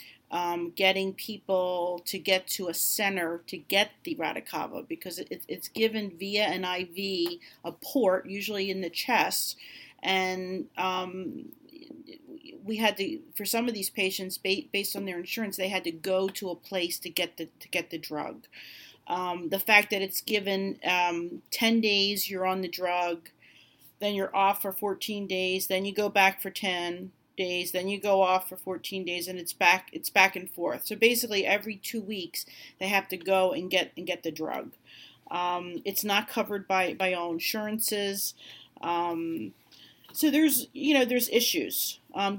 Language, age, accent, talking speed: English, 40-59, American, 175 wpm